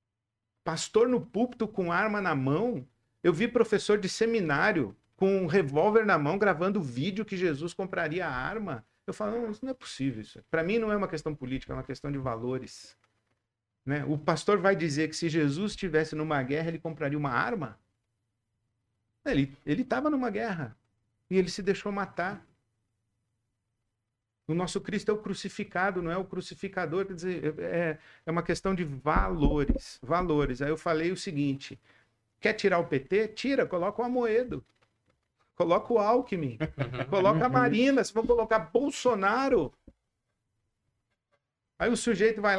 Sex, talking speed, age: male, 160 wpm, 50-69